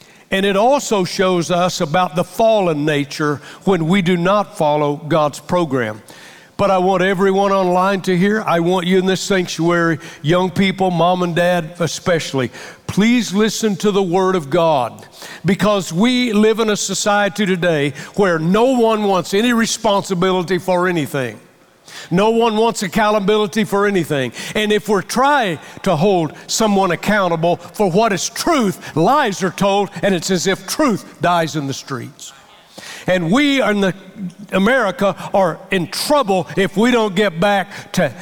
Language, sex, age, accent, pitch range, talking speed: English, male, 60-79, American, 170-205 Hz, 160 wpm